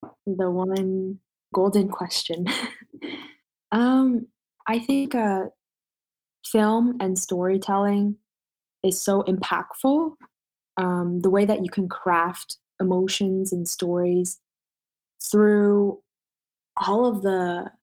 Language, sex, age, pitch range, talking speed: English, female, 20-39, 170-205 Hz, 95 wpm